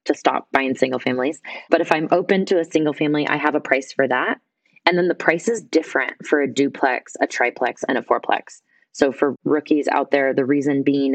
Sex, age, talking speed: female, 20-39, 220 wpm